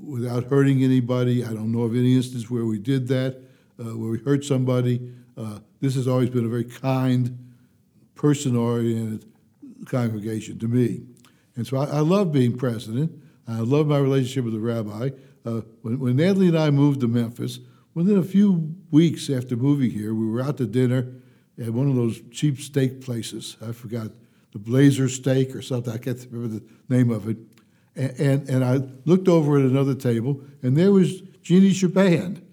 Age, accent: 60-79, American